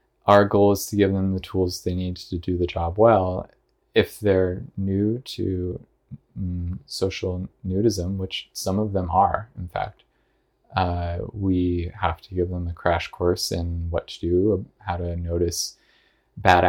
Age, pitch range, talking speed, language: 20-39, 90-105 Hz, 170 wpm, English